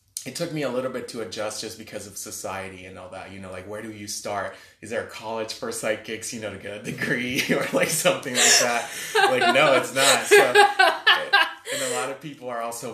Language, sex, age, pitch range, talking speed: English, male, 20-39, 95-110 Hz, 235 wpm